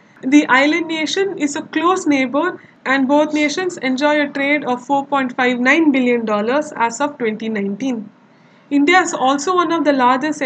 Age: 20-39